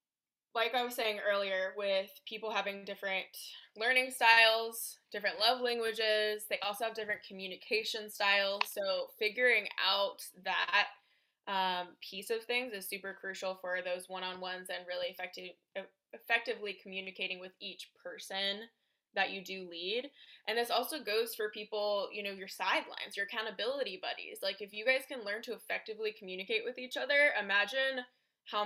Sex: female